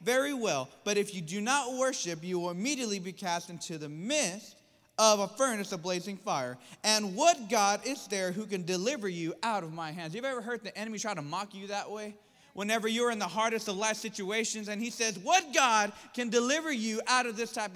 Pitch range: 195-255 Hz